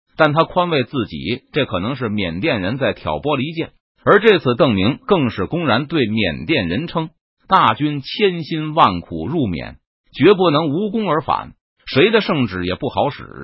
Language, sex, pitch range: Chinese, male, 115-185 Hz